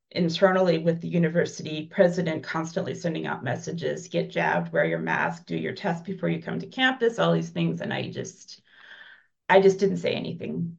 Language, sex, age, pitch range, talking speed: English, female, 30-49, 160-185 Hz, 185 wpm